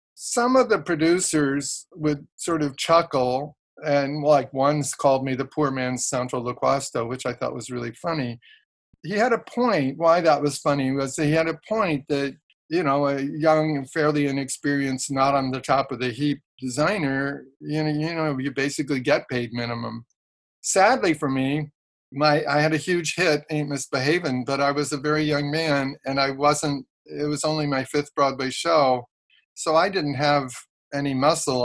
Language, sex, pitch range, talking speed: English, male, 130-150 Hz, 180 wpm